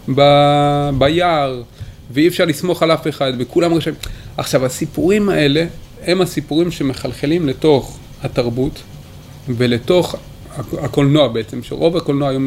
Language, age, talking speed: Hebrew, 30-49, 110 wpm